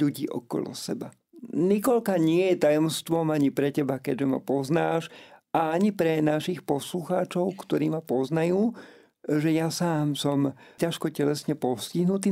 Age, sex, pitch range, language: 50-69, male, 150-190 Hz, Slovak